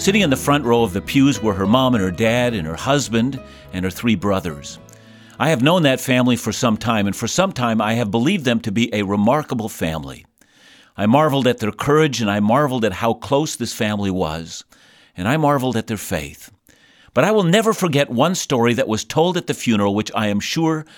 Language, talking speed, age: English, 225 wpm, 50-69